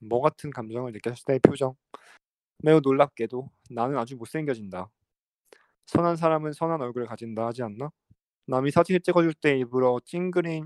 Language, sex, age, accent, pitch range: Korean, male, 20-39, native, 115-145 Hz